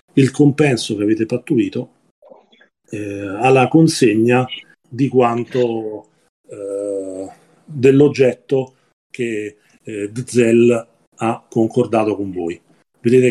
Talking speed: 85 wpm